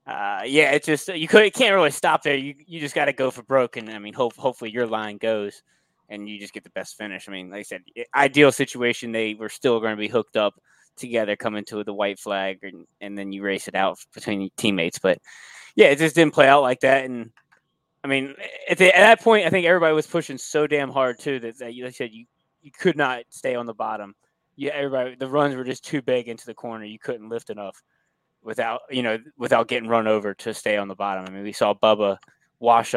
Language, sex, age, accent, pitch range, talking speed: English, male, 20-39, American, 105-135 Hz, 250 wpm